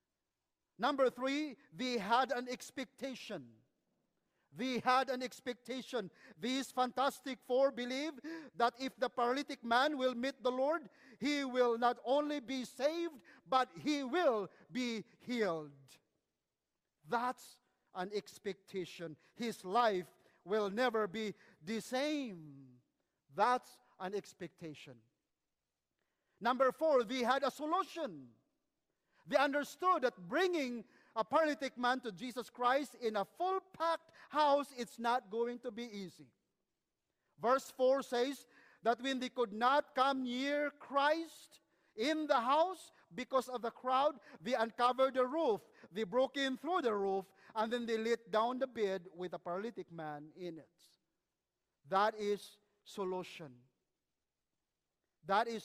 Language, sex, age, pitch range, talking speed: English, male, 50-69, 200-265 Hz, 130 wpm